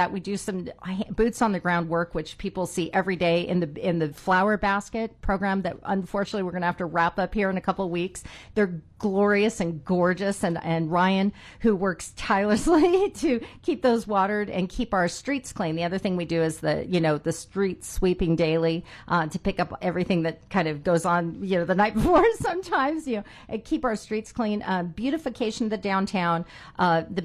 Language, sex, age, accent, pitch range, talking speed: English, female, 40-59, American, 170-215 Hz, 215 wpm